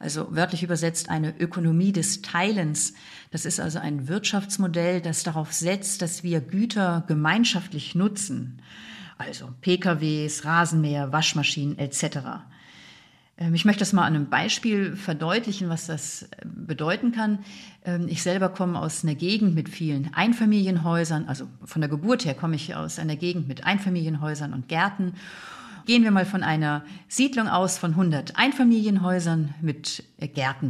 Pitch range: 155-195 Hz